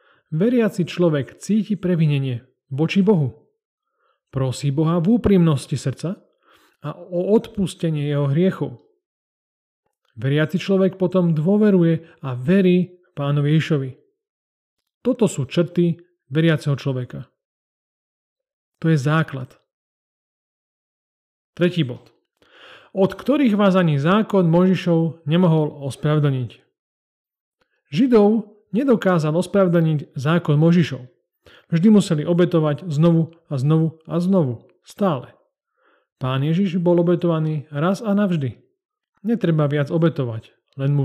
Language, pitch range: Slovak, 150-195 Hz